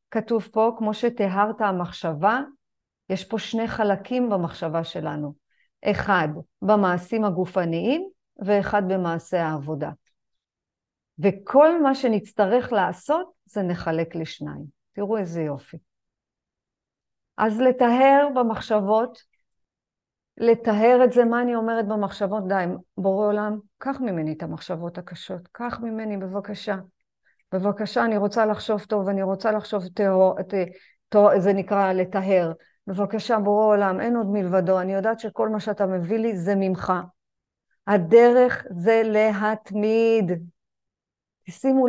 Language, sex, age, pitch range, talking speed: Hebrew, female, 50-69, 185-230 Hz, 115 wpm